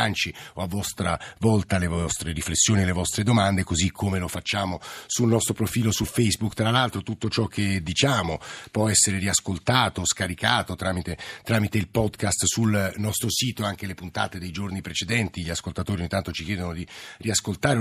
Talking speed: 170 wpm